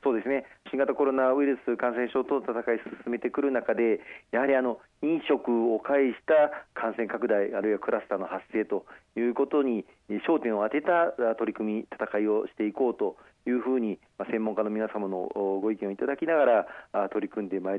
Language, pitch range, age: Japanese, 105-135 Hz, 40-59